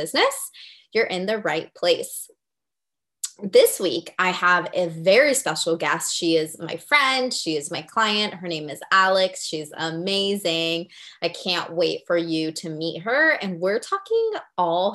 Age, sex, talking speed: 20-39, female, 160 wpm